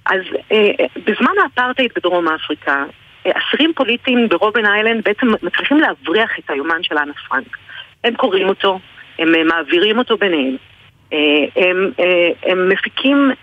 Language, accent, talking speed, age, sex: Hebrew, native, 125 wpm, 40-59, female